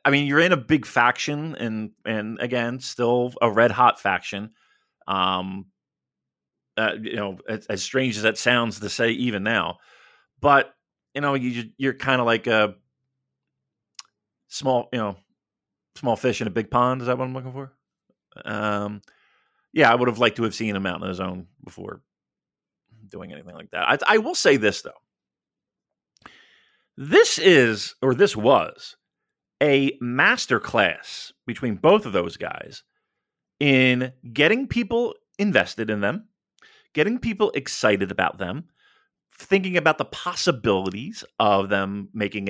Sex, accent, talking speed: male, American, 150 wpm